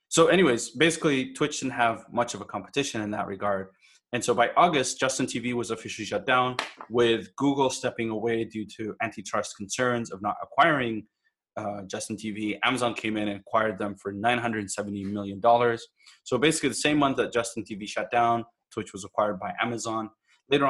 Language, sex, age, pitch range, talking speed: English, male, 20-39, 105-120 Hz, 180 wpm